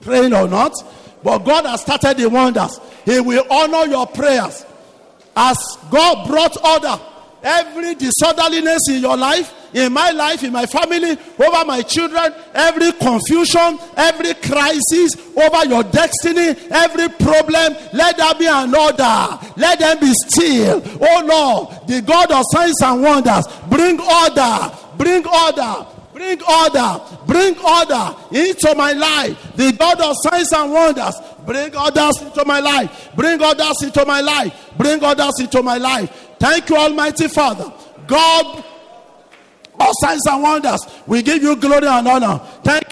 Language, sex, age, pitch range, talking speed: English, male, 50-69, 270-325 Hz, 150 wpm